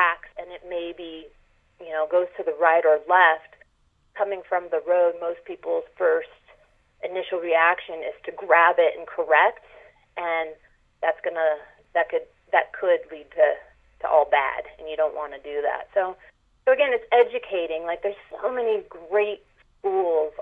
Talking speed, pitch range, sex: 160 wpm, 160-215 Hz, female